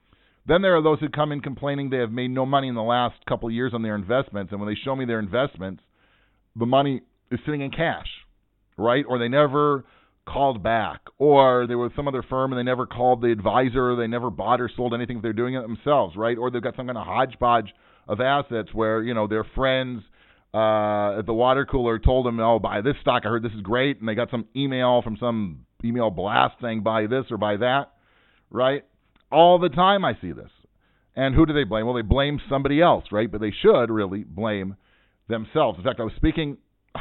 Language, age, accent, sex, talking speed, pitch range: English, 40-59, American, male, 225 wpm, 105-130 Hz